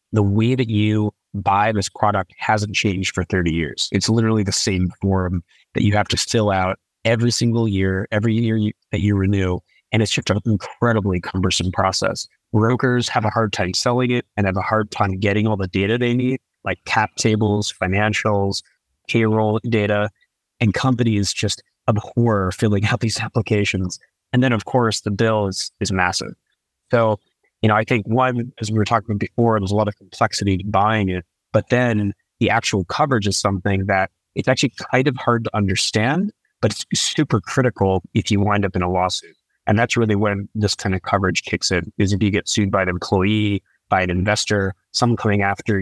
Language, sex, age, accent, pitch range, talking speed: English, male, 30-49, American, 95-115 Hz, 195 wpm